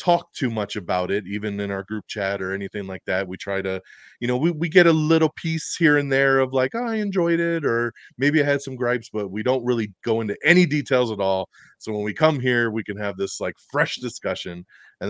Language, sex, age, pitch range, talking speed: English, male, 30-49, 100-135 Hz, 245 wpm